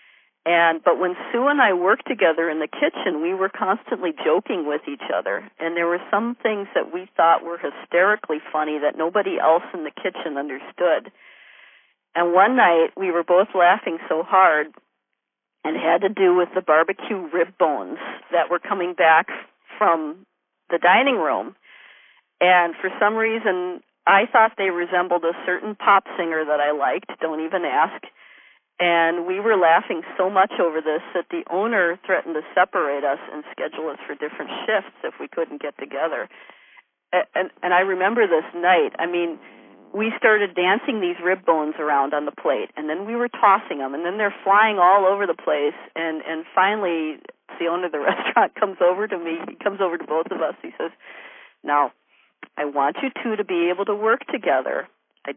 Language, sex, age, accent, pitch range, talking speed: English, female, 50-69, American, 165-200 Hz, 185 wpm